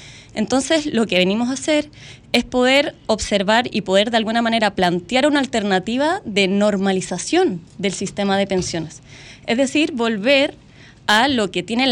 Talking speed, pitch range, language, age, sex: 150 wpm, 190-275 Hz, Spanish, 20-39, female